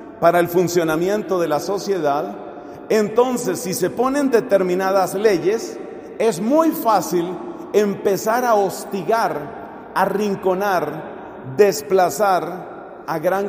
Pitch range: 175-230 Hz